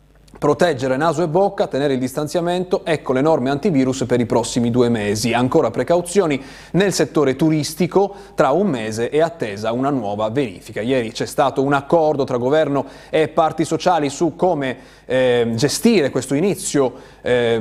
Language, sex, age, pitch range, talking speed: Italian, male, 30-49, 125-160 Hz, 155 wpm